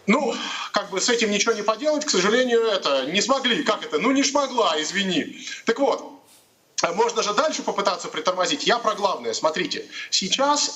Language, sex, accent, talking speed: Russian, male, native, 175 wpm